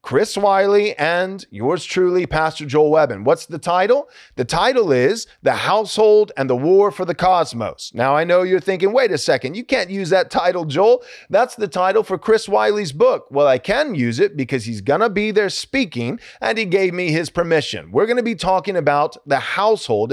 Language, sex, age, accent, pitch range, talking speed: English, male, 30-49, American, 150-215 Hz, 200 wpm